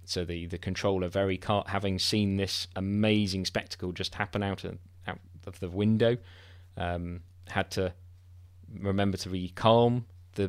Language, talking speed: English, 155 wpm